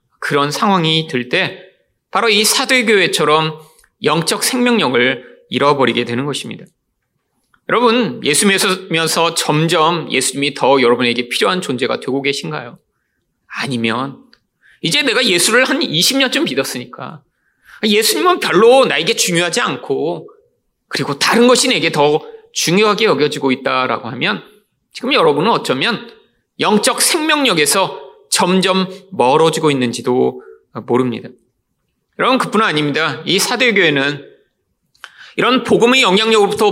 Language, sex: Korean, male